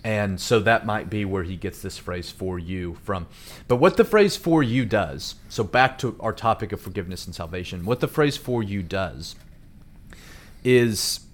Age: 30-49